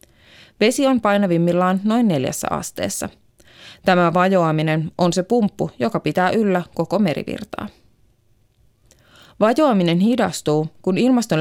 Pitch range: 160-215 Hz